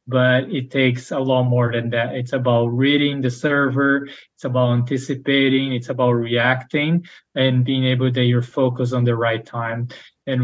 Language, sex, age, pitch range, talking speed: English, male, 20-39, 125-140 Hz, 170 wpm